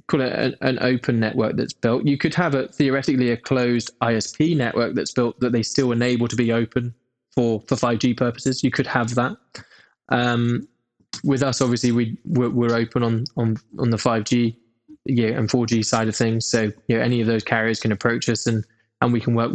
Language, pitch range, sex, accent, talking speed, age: English, 115-125 Hz, male, British, 195 wpm, 10-29